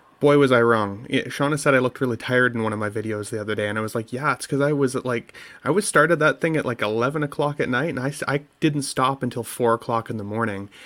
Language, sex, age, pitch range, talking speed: English, male, 30-49, 115-145 Hz, 280 wpm